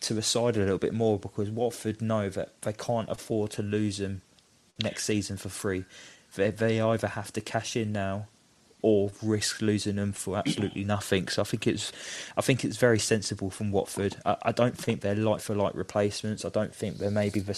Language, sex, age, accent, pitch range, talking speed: English, male, 20-39, British, 100-110 Hz, 210 wpm